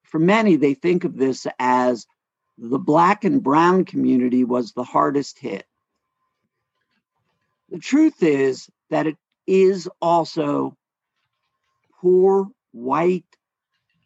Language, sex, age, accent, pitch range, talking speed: English, male, 50-69, American, 135-205 Hz, 105 wpm